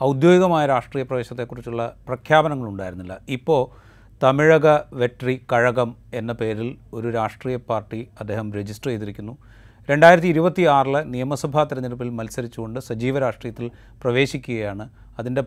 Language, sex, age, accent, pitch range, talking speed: Malayalam, male, 30-49, native, 110-145 Hz, 95 wpm